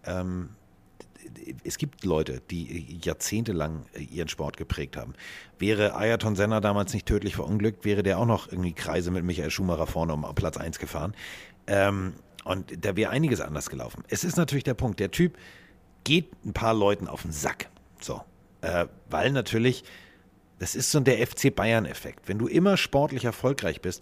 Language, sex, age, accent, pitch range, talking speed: German, male, 50-69, German, 95-130 Hz, 170 wpm